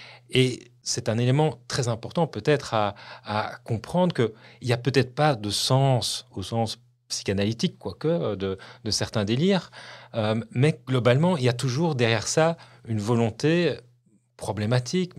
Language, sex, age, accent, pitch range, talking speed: French, male, 40-59, French, 105-135 Hz, 145 wpm